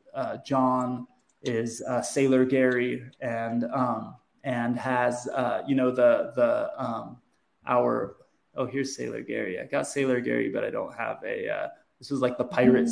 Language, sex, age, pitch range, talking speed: English, male, 20-39, 125-140 Hz, 165 wpm